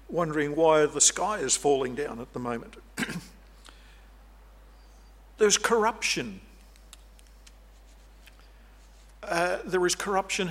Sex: male